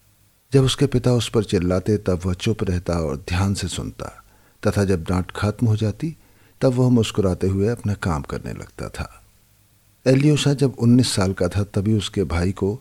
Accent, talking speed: native, 185 wpm